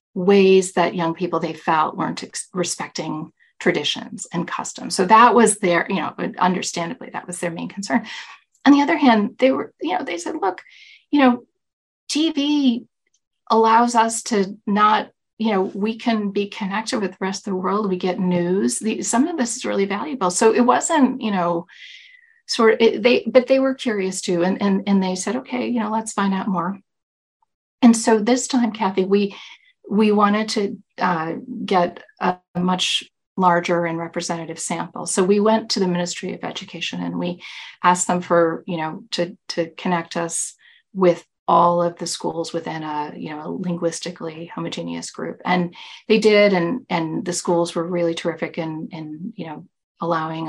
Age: 40-59